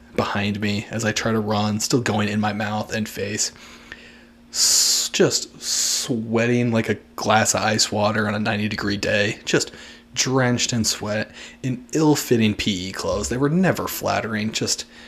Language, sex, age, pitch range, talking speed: English, male, 30-49, 110-145 Hz, 160 wpm